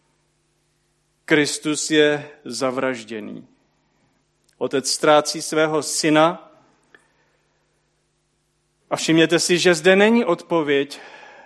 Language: Czech